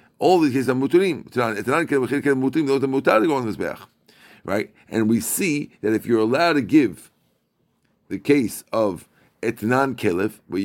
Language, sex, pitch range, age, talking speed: English, male, 110-150 Hz, 50-69, 145 wpm